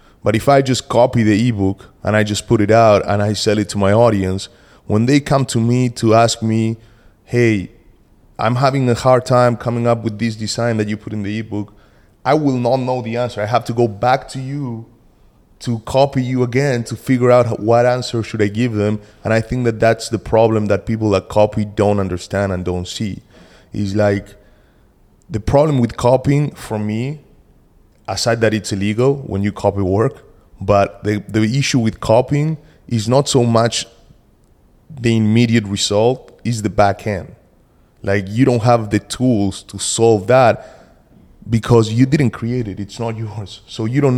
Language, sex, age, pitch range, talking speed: English, male, 20-39, 100-120 Hz, 190 wpm